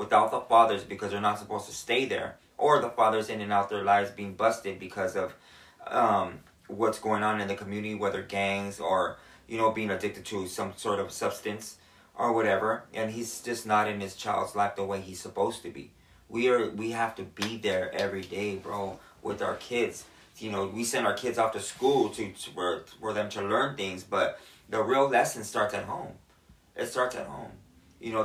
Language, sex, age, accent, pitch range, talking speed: English, male, 20-39, American, 100-120 Hz, 210 wpm